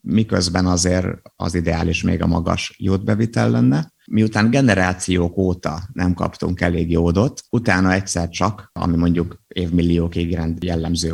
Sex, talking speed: male, 130 wpm